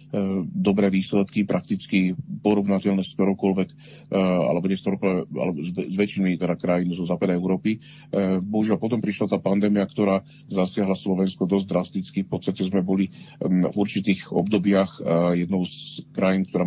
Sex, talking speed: male, 135 wpm